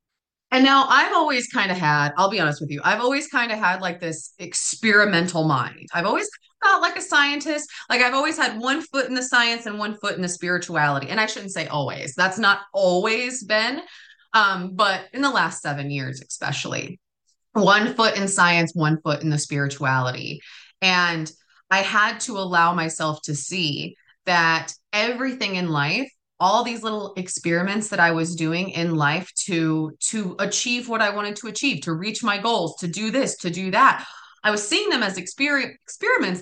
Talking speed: 190 wpm